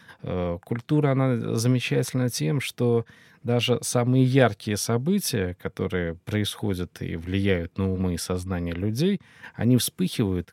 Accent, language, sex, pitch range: native, Russian, male, 100-130 Hz